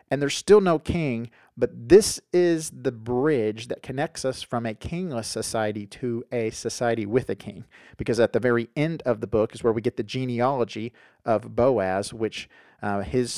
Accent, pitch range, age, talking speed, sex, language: American, 115-145 Hz, 40-59, 190 wpm, male, English